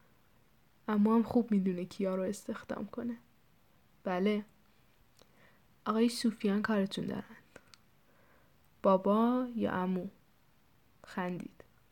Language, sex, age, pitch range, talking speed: Persian, female, 10-29, 195-230 Hz, 85 wpm